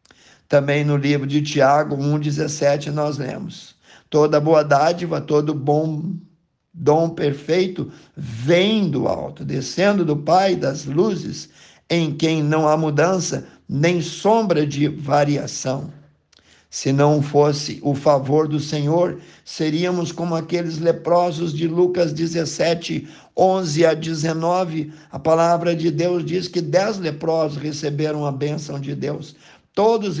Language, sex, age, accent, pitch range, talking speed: Portuguese, male, 50-69, Brazilian, 150-170 Hz, 125 wpm